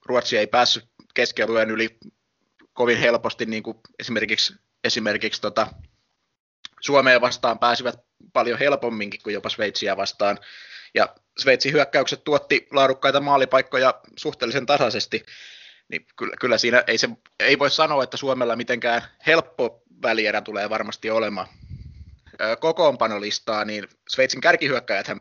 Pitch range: 105-125 Hz